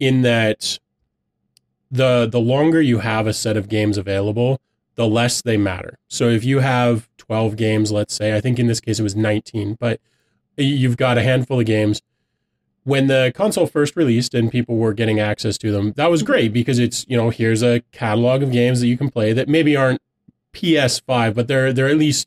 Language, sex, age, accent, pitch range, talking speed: English, male, 20-39, American, 110-135 Hz, 205 wpm